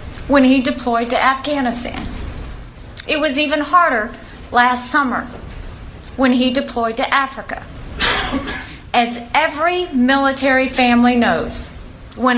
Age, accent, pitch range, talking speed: 40-59, American, 240-290 Hz, 105 wpm